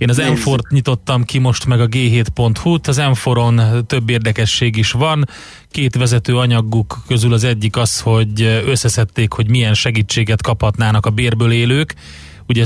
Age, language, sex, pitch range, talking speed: 30-49, Hungarian, male, 110-125 Hz, 150 wpm